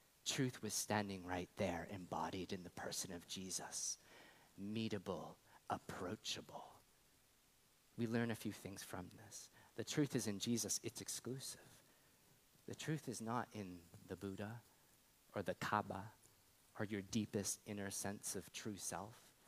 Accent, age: American, 30-49